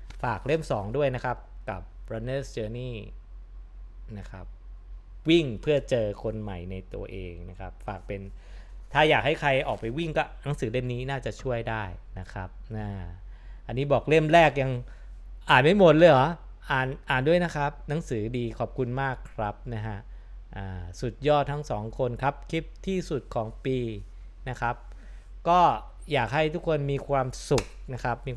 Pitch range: 95-135 Hz